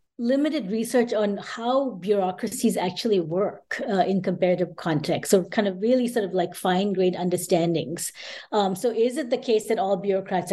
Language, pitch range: English, 185-230 Hz